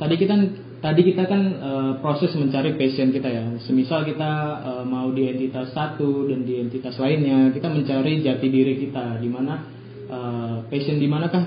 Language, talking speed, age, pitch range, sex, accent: Indonesian, 175 wpm, 20-39, 125-145 Hz, male, native